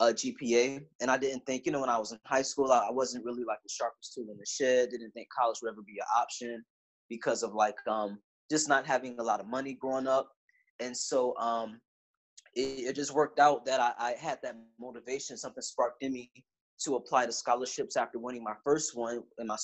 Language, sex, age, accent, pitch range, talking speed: English, male, 20-39, American, 120-140 Hz, 225 wpm